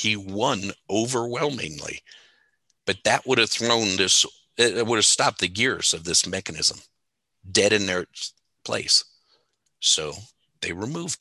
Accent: American